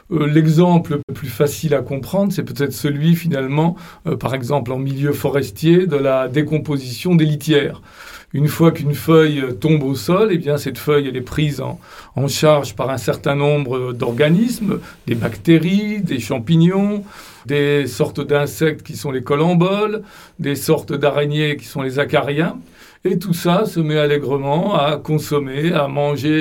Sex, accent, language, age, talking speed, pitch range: male, French, French, 40-59, 165 wpm, 145-170 Hz